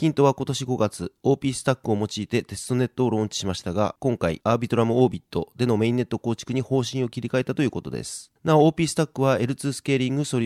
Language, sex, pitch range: Japanese, male, 105-130 Hz